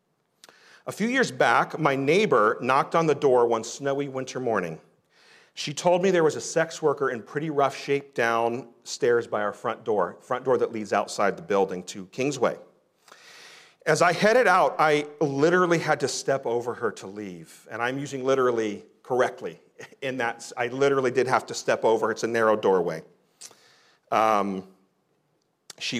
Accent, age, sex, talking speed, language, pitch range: American, 40-59, male, 170 wpm, English, 125-165 Hz